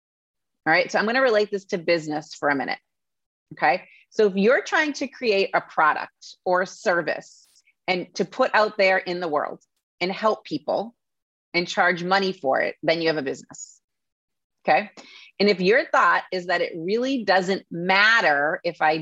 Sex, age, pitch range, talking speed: female, 30-49, 170-210 Hz, 185 wpm